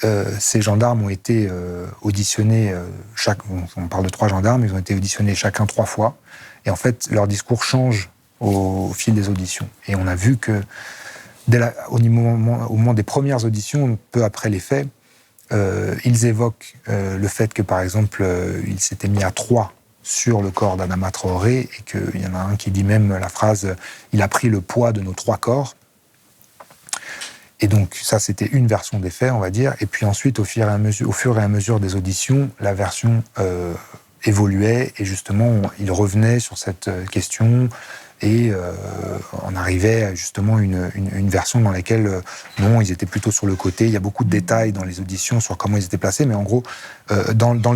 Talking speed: 215 wpm